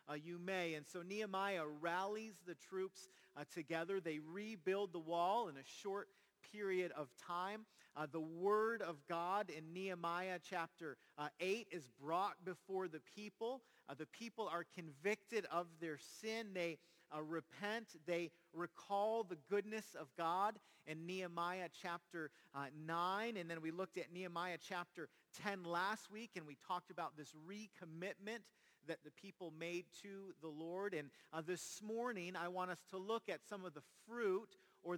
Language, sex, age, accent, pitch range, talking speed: English, male, 40-59, American, 155-200 Hz, 165 wpm